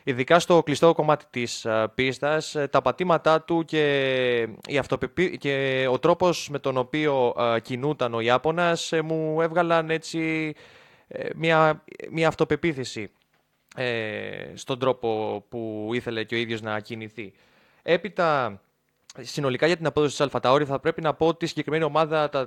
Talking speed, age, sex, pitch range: 140 wpm, 20-39, male, 120-155 Hz